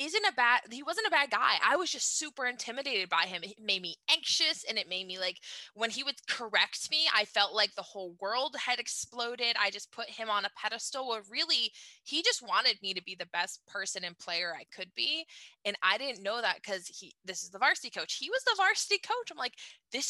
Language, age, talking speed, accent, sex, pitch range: English, 20-39, 240 wpm, American, female, 180-250 Hz